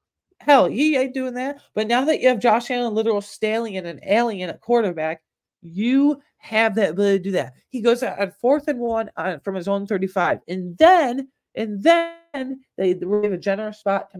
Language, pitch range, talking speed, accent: English, 170-225 Hz, 200 wpm, American